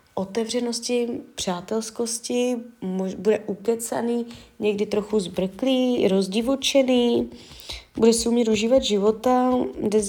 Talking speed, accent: 90 wpm, native